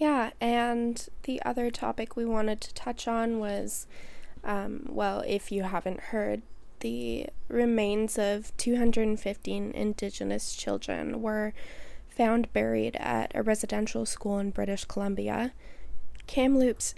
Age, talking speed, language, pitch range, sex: 10-29, 120 wpm, English, 190-230 Hz, female